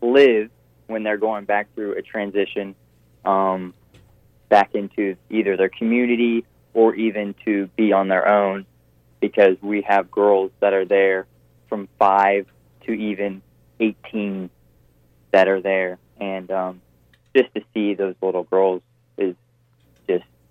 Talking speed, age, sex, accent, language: 135 wpm, 20-39, male, American, English